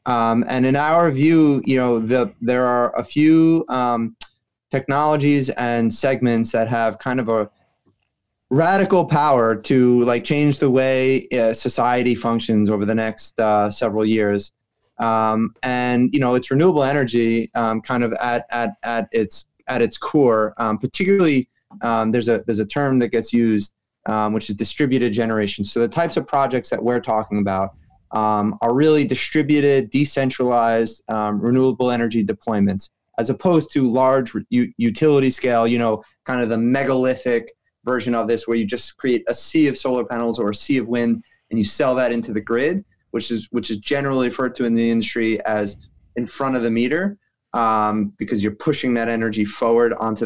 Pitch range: 110-130 Hz